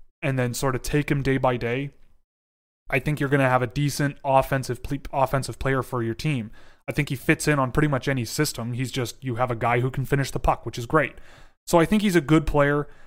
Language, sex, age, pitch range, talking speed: English, male, 30-49, 120-145 Hz, 255 wpm